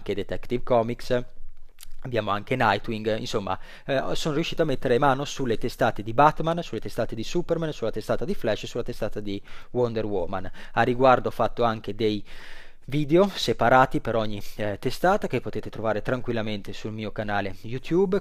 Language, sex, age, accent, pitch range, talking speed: Italian, male, 20-39, native, 110-130 Hz, 165 wpm